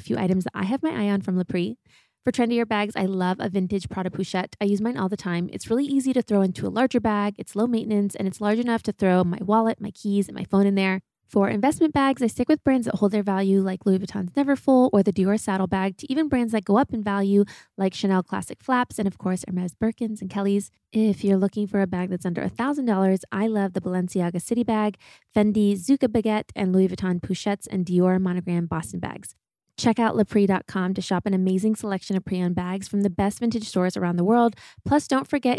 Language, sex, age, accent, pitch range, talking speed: English, female, 20-39, American, 190-225 Hz, 240 wpm